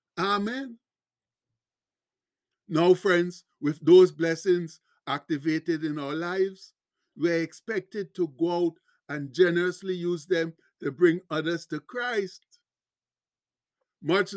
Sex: male